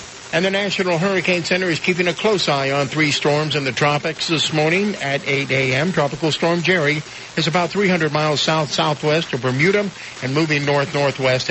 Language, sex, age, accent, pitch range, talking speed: English, male, 60-79, American, 130-165 Hz, 175 wpm